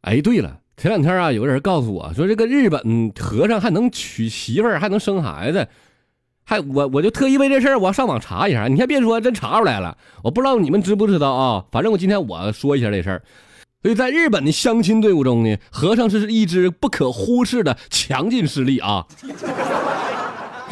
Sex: male